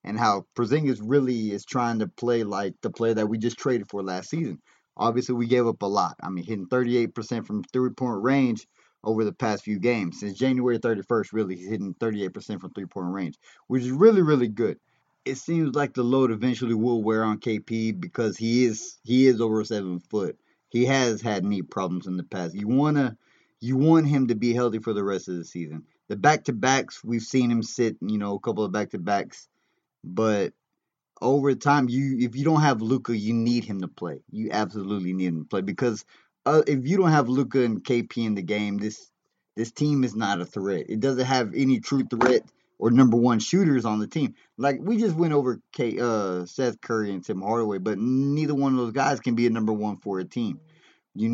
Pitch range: 105-130 Hz